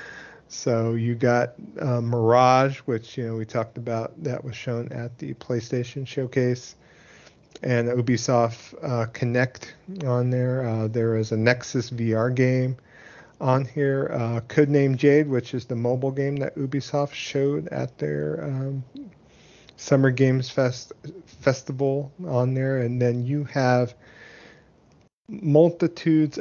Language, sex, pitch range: English, male, 115-140 Hz